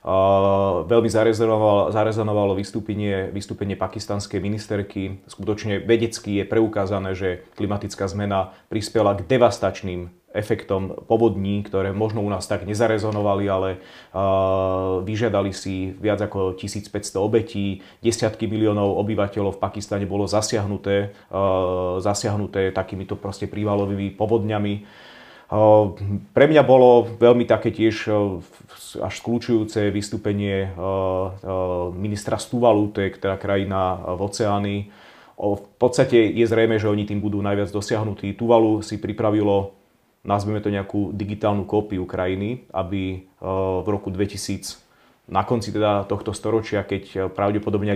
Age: 30-49